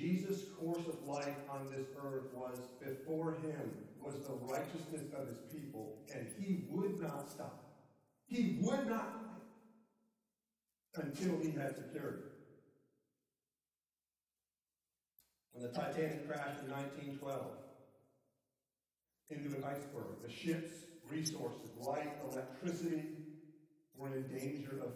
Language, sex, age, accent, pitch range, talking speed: English, male, 50-69, American, 150-195 Hz, 110 wpm